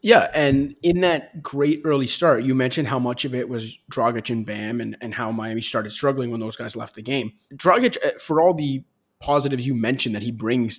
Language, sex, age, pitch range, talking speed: English, male, 20-39, 125-145 Hz, 215 wpm